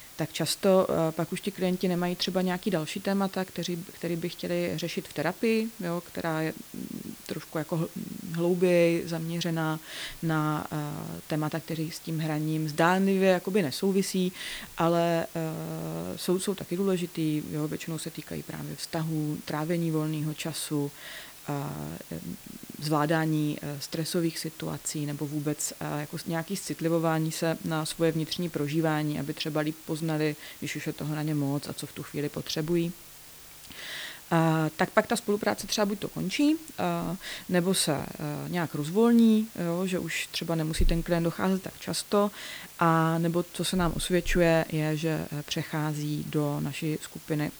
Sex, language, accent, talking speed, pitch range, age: female, Czech, native, 145 wpm, 155-180 Hz, 30-49